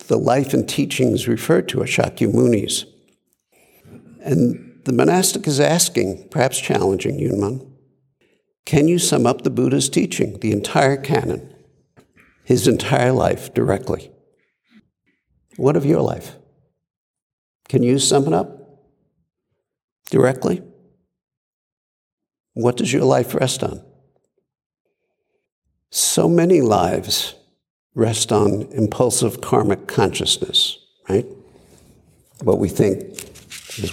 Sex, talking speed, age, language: male, 105 wpm, 60-79, English